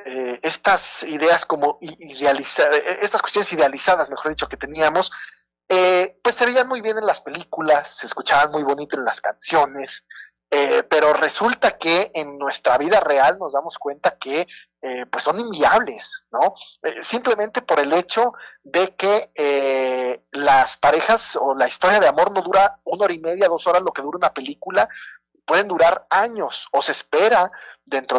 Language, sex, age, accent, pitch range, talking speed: Spanish, male, 40-59, Mexican, 145-210 Hz, 170 wpm